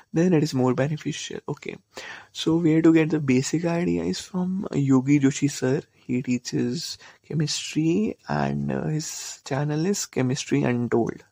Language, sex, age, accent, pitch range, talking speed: Hindi, male, 20-39, native, 130-165 Hz, 160 wpm